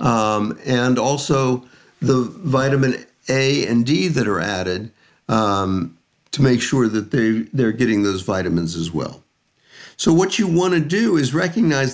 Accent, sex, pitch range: American, male, 110-155 Hz